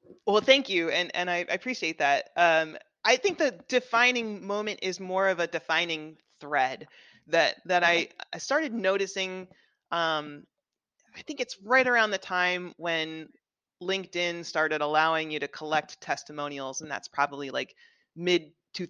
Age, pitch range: 30-49, 160-205 Hz